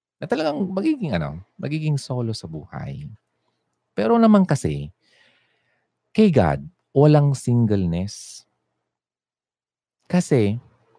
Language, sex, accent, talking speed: Filipino, male, native, 85 wpm